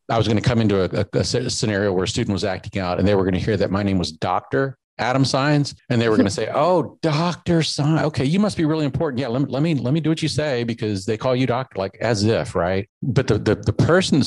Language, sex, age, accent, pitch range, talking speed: English, male, 40-59, American, 95-125 Hz, 300 wpm